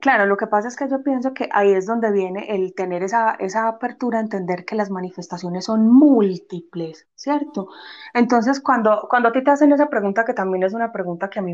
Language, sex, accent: Spanish, female, Colombian